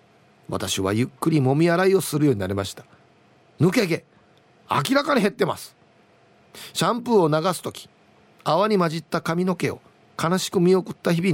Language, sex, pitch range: Japanese, male, 145-225 Hz